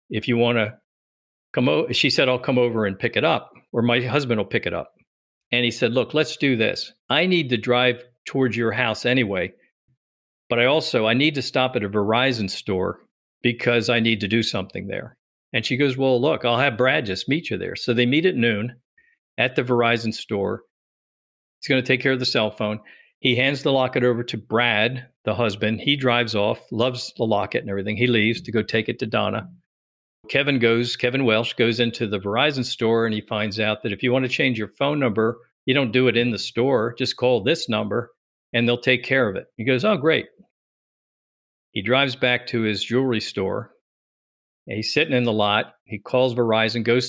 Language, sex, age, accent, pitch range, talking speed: English, male, 50-69, American, 110-130 Hz, 215 wpm